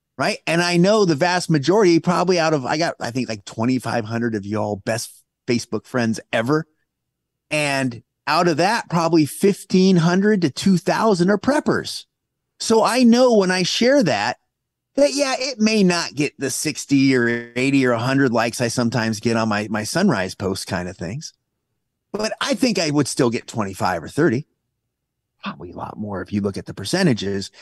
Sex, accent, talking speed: male, American, 180 wpm